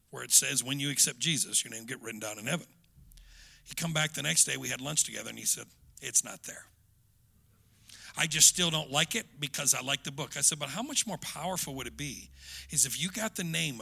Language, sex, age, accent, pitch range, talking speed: English, male, 50-69, American, 145-220 Hz, 250 wpm